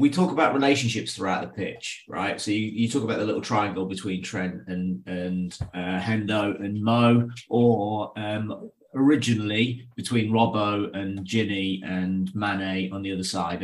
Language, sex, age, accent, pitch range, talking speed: English, male, 30-49, British, 95-115 Hz, 165 wpm